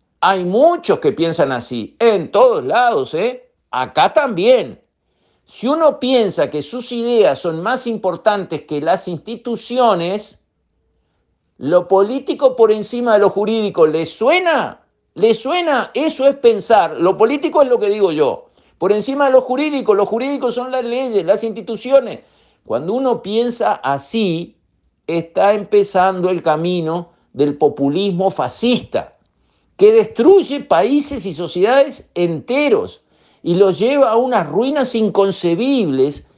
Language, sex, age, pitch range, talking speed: Spanish, male, 50-69, 170-260 Hz, 130 wpm